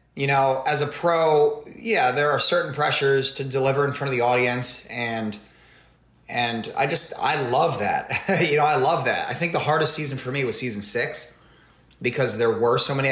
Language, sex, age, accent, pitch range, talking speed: German, male, 20-39, American, 115-150 Hz, 200 wpm